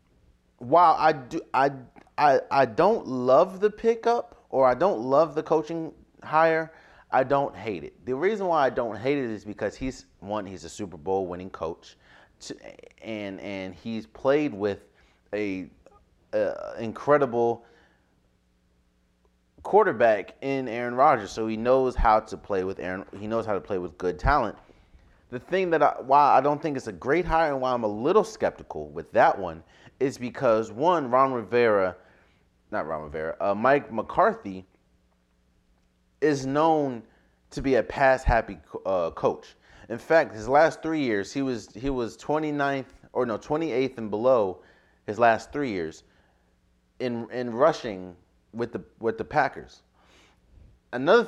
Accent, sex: American, male